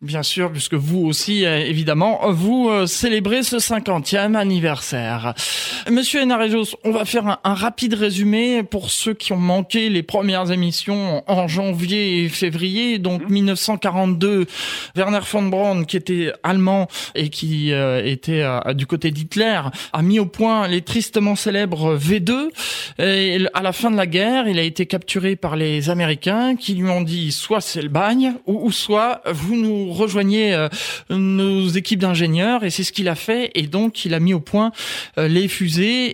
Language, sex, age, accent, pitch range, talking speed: French, male, 20-39, French, 165-210 Hz, 175 wpm